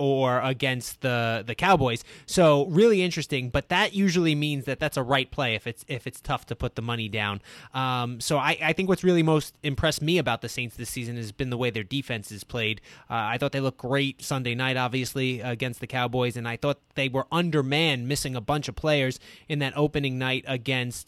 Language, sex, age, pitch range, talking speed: English, male, 20-39, 125-155 Hz, 220 wpm